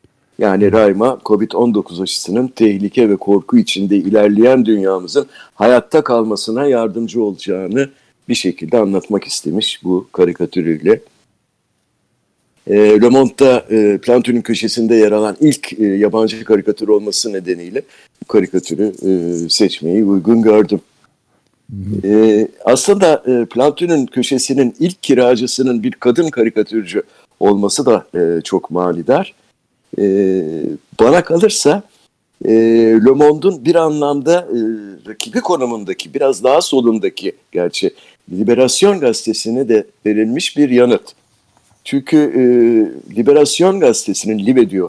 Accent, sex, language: native, male, Turkish